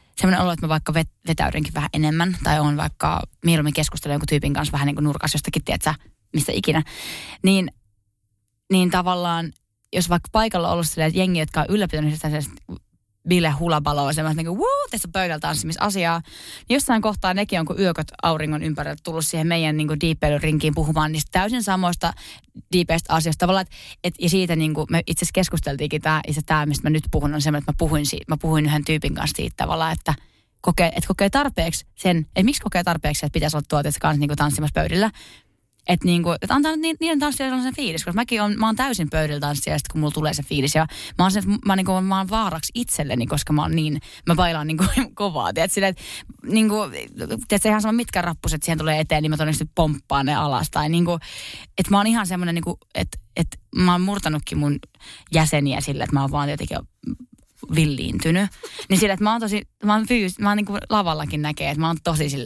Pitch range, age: 150-190 Hz, 20-39